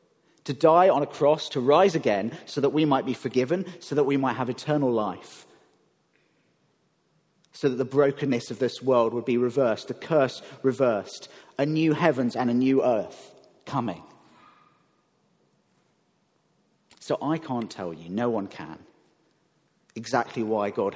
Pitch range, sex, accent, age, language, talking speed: 120-150 Hz, male, British, 40-59, English, 150 wpm